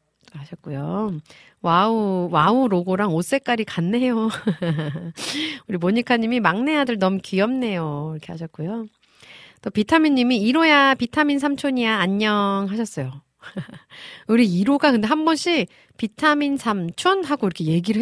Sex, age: female, 40-59